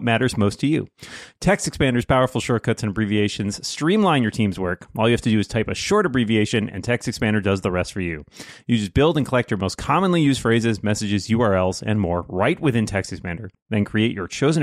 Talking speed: 220 wpm